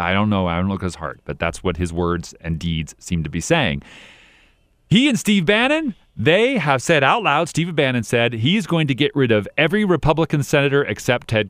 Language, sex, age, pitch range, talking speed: English, male, 40-59, 105-165 Hz, 225 wpm